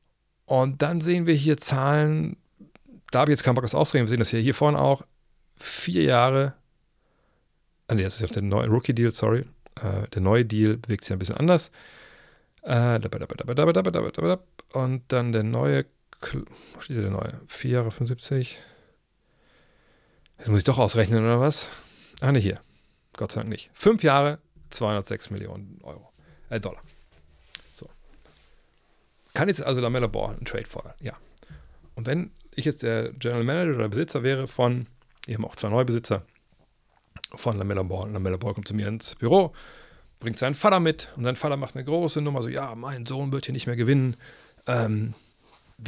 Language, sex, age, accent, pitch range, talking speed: German, male, 40-59, German, 110-140 Hz, 170 wpm